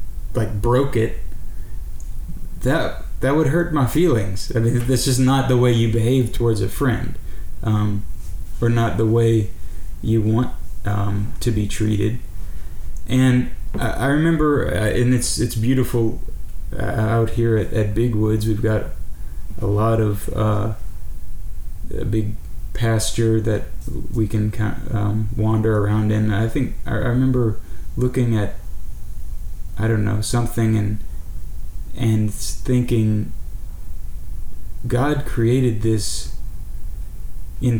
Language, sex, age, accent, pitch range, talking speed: English, male, 20-39, American, 100-115 Hz, 125 wpm